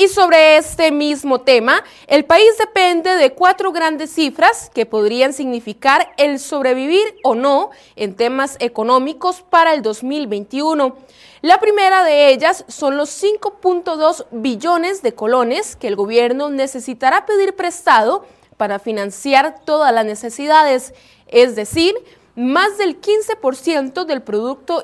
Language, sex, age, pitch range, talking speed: Spanish, female, 30-49, 245-345 Hz, 130 wpm